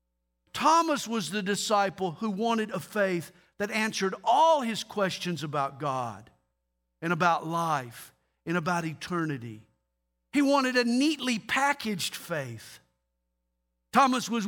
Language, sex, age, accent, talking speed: English, male, 50-69, American, 120 wpm